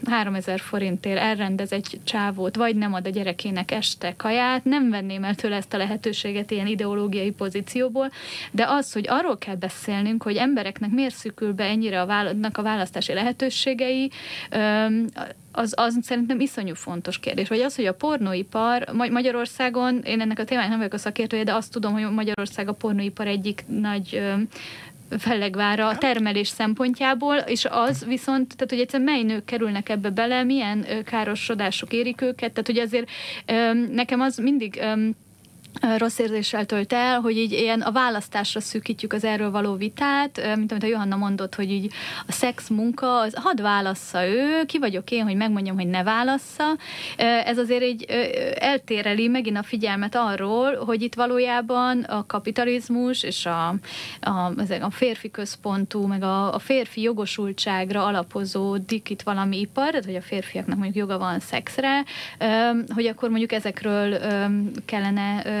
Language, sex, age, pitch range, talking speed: Hungarian, female, 30-49, 200-245 Hz, 155 wpm